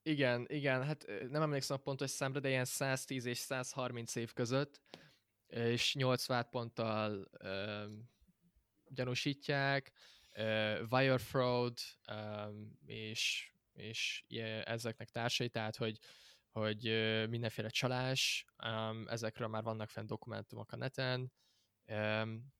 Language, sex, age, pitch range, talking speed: Hungarian, male, 10-29, 110-125 Hz, 110 wpm